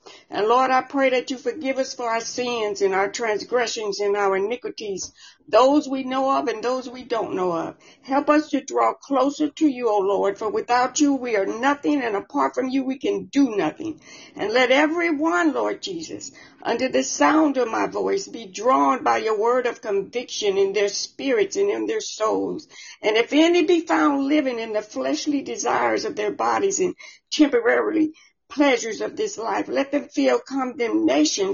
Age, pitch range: 60-79, 235-325 Hz